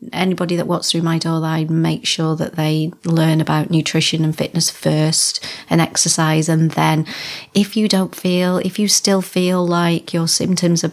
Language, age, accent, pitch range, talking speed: English, 40-59, British, 160-175 Hz, 180 wpm